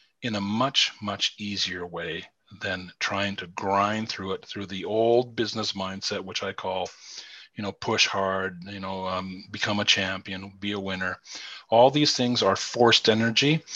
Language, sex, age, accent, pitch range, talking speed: English, male, 40-59, American, 95-110 Hz, 170 wpm